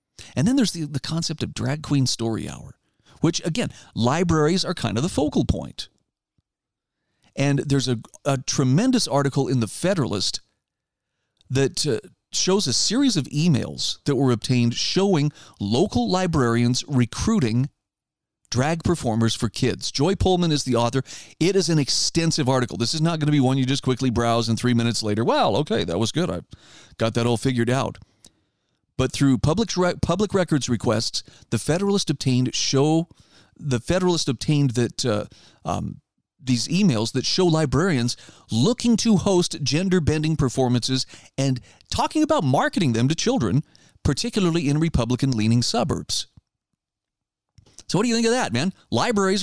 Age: 40-59